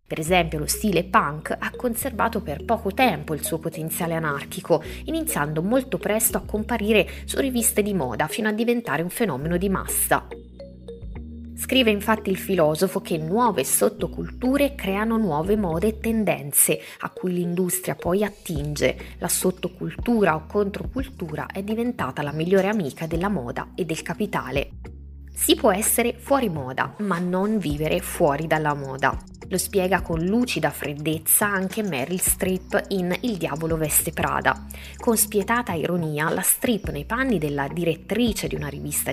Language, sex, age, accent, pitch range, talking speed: Italian, female, 20-39, native, 155-215 Hz, 150 wpm